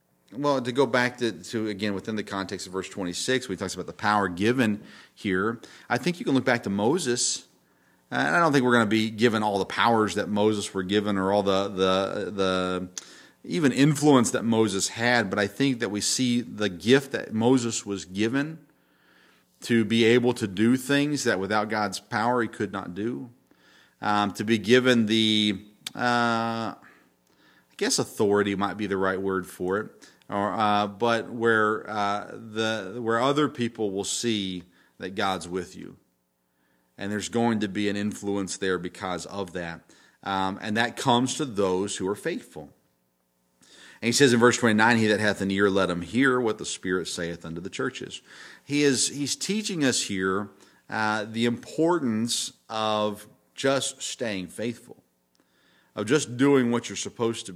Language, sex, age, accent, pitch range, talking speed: English, male, 40-59, American, 95-120 Hz, 180 wpm